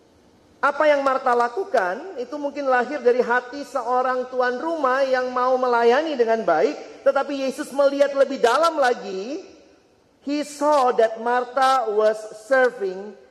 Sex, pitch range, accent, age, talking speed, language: male, 215-285 Hz, native, 40-59, 130 wpm, Indonesian